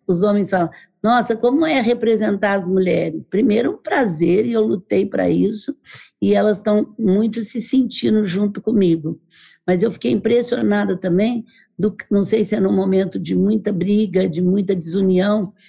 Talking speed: 165 wpm